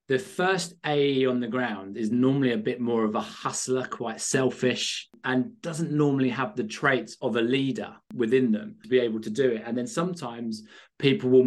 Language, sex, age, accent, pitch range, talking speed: English, male, 20-39, British, 120-145 Hz, 200 wpm